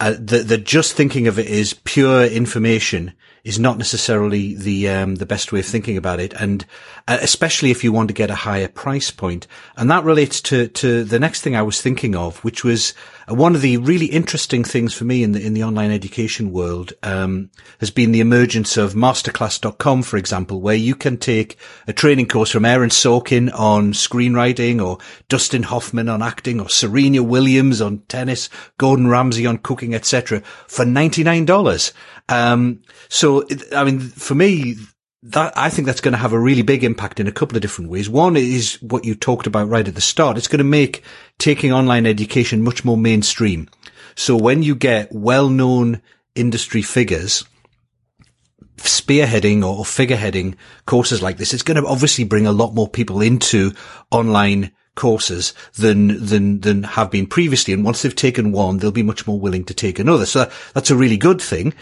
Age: 40-59